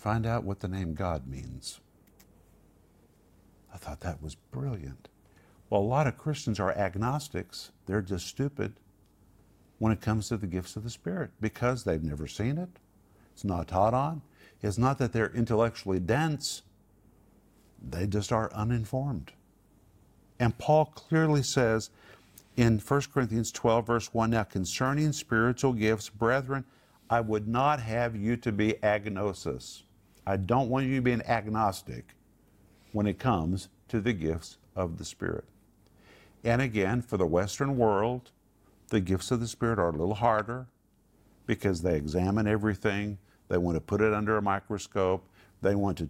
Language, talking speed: English, 155 wpm